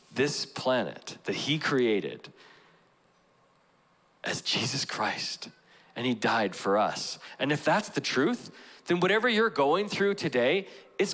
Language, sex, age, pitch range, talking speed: English, male, 40-59, 130-180 Hz, 135 wpm